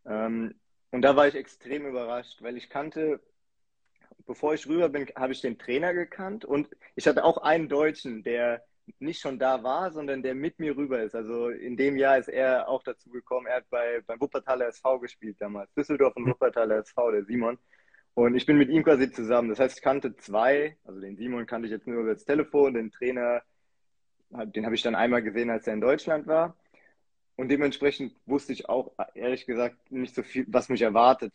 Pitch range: 115-145 Hz